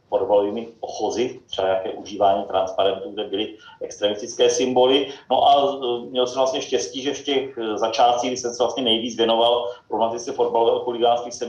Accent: native